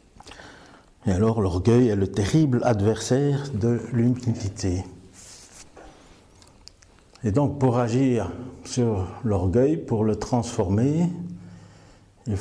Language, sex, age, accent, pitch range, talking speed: French, male, 50-69, French, 100-125 Hz, 90 wpm